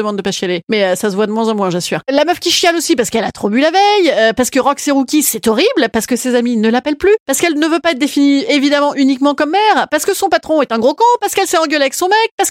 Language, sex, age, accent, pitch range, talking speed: French, female, 30-49, French, 220-320 Hz, 320 wpm